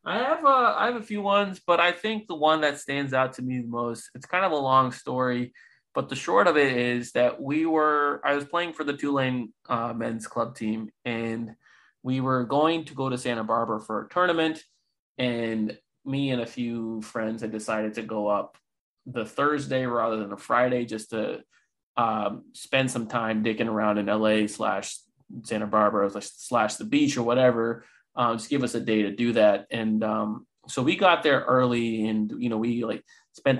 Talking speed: 205 wpm